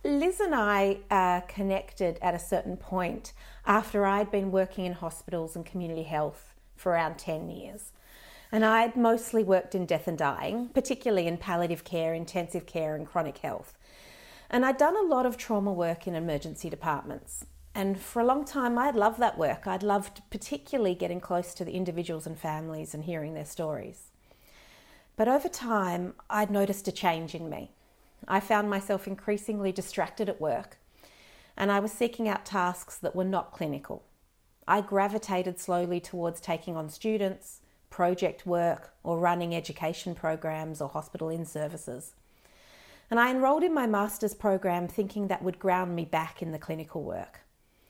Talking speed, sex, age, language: 165 wpm, female, 40-59, English